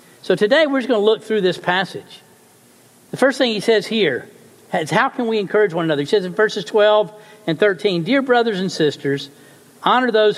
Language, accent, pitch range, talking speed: English, American, 170-225 Hz, 210 wpm